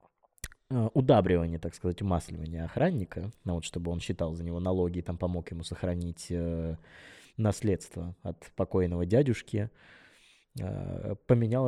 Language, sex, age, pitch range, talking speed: Russian, male, 20-39, 90-110 Hz, 130 wpm